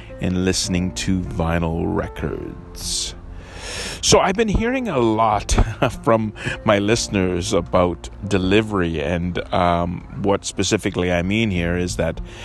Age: 30-49